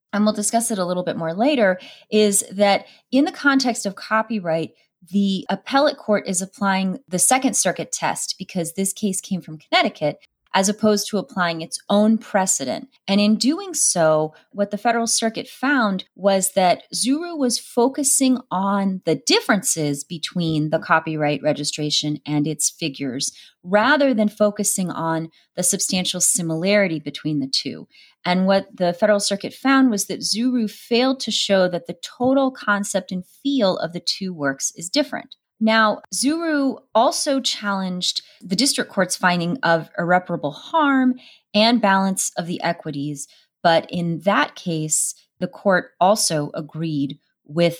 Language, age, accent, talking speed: English, 30-49, American, 150 wpm